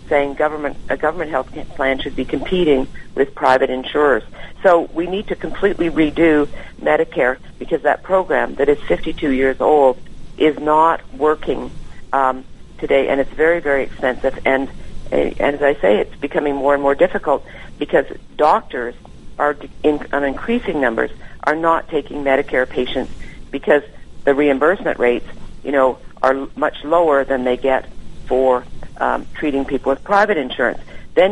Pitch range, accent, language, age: 135-160 Hz, American, English, 50-69